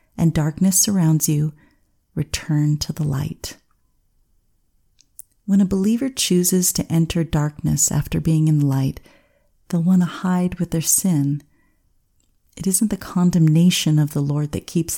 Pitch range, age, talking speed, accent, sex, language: 150-180 Hz, 40-59, 145 wpm, American, female, English